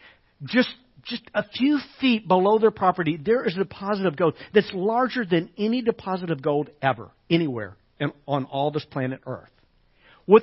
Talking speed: 175 wpm